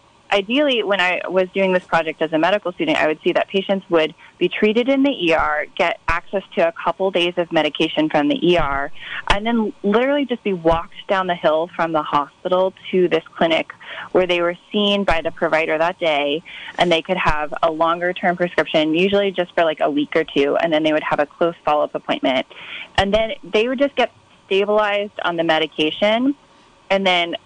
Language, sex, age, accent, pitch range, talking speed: English, female, 20-39, American, 165-195 Hz, 205 wpm